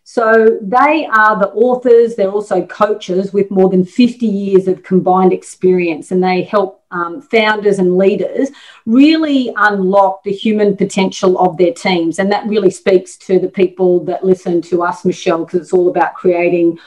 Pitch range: 180-215 Hz